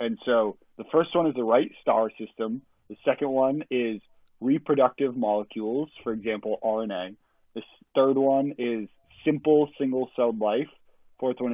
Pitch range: 110-130 Hz